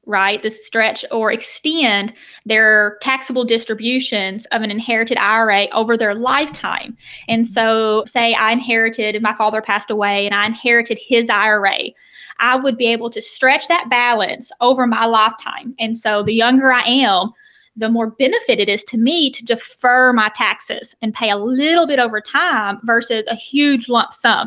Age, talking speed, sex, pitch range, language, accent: 20-39, 170 wpm, female, 220-255 Hz, English, American